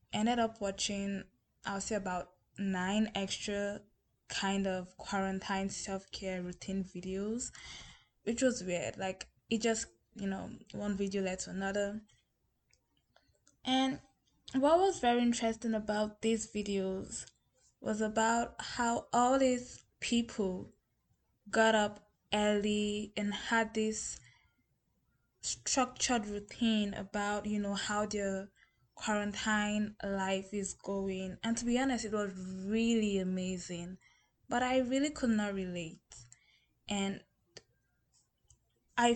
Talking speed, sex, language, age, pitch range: 115 wpm, female, English, 10-29, 190-225 Hz